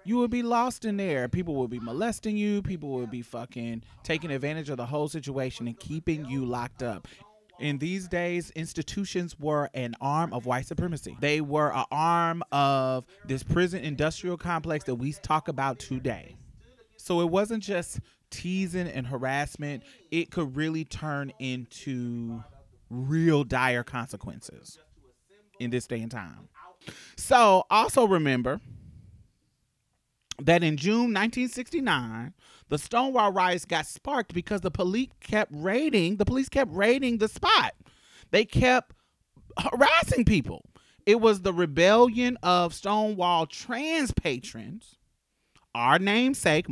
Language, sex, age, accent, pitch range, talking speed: English, male, 30-49, American, 130-200 Hz, 135 wpm